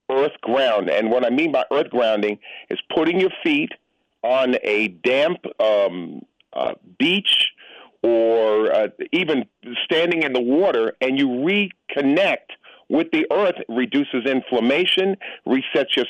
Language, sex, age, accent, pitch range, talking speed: English, male, 50-69, American, 125-190 Hz, 140 wpm